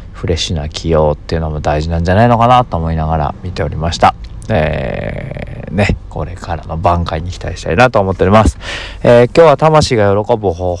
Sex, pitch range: male, 80-100 Hz